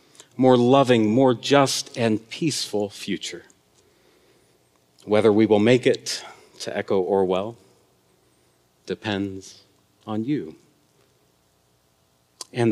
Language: English